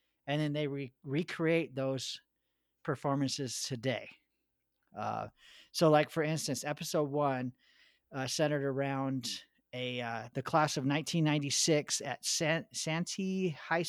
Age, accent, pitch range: 50-69, American, 125-155 Hz